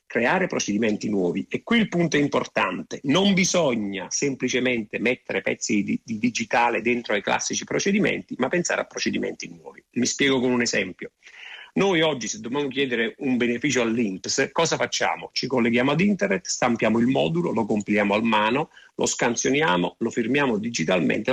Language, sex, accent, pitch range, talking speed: Italian, male, native, 110-140 Hz, 160 wpm